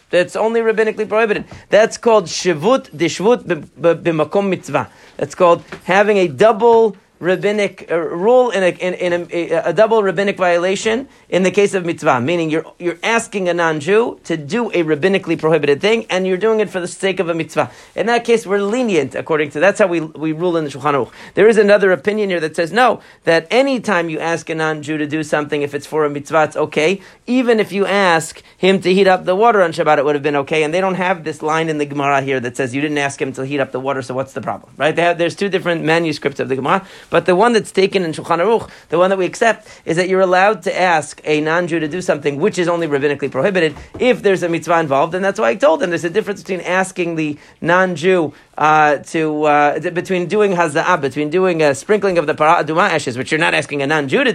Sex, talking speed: male, 235 wpm